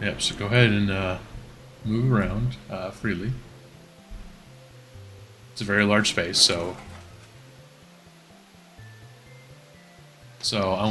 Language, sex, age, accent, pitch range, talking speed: English, male, 30-49, American, 100-125 Hz, 100 wpm